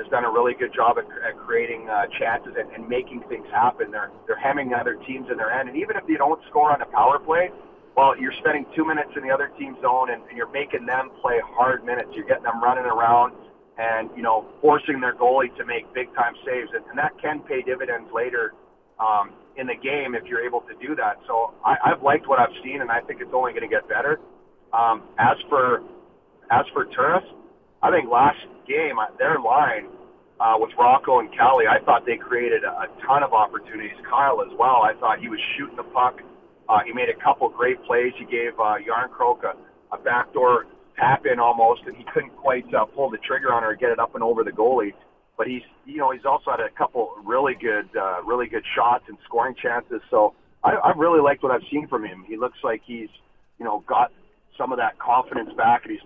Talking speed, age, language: 230 wpm, 40-59, English